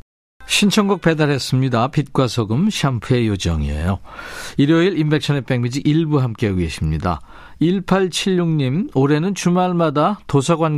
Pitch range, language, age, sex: 120-165 Hz, Korean, 50-69, male